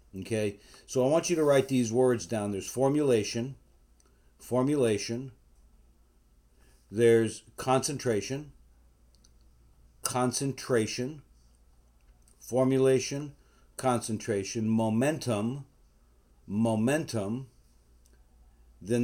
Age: 50-69